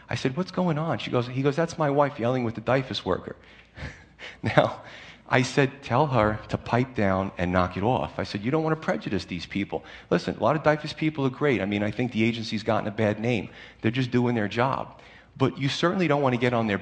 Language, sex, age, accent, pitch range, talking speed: English, male, 40-59, American, 100-130 Hz, 250 wpm